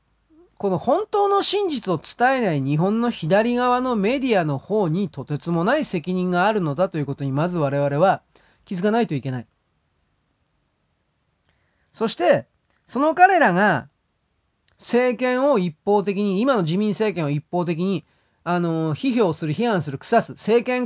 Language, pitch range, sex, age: Japanese, 145-225 Hz, male, 30-49